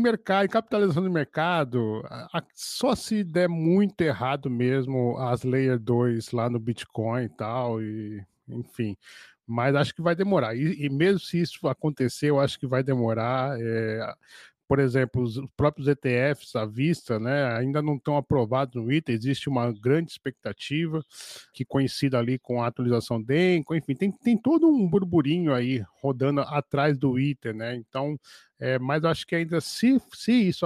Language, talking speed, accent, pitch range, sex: Portuguese, 165 wpm, Brazilian, 130-170 Hz, male